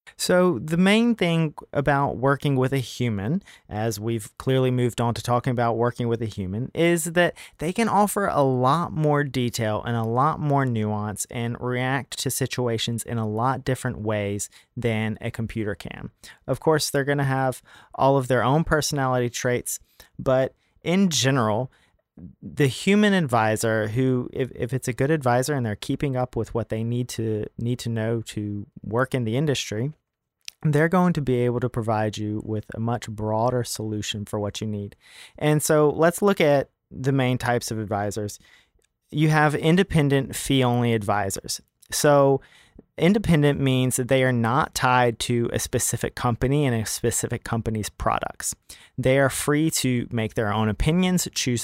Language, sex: English, male